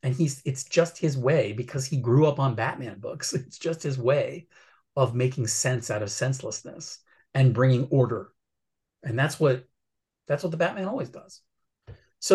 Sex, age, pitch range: male, 30-49, 115-145 Hz